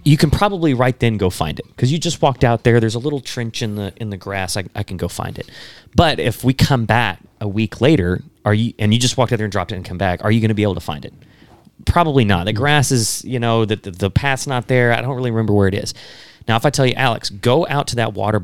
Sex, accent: male, American